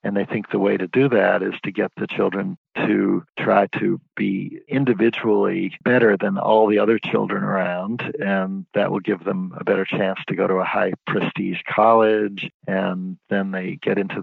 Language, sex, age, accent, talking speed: English, male, 50-69, American, 185 wpm